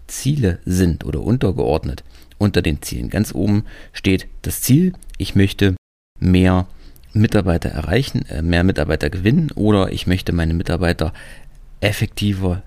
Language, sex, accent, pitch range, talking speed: German, male, German, 85-110 Hz, 125 wpm